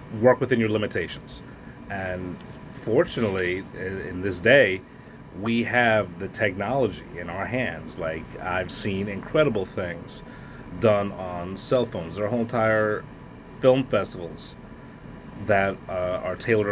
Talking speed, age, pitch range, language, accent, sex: 125 wpm, 30-49, 95-115 Hz, English, American, male